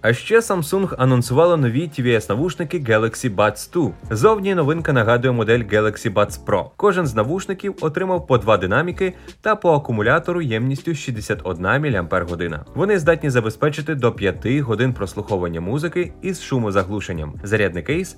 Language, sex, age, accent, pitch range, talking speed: Ukrainian, male, 20-39, native, 105-175 Hz, 135 wpm